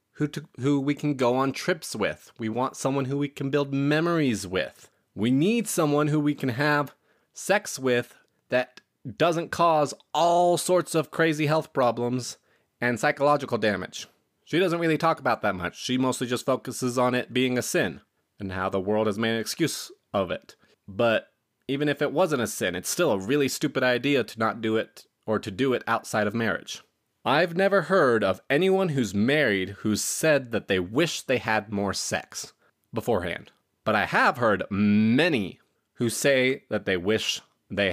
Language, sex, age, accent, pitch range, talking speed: English, male, 30-49, American, 110-145 Hz, 185 wpm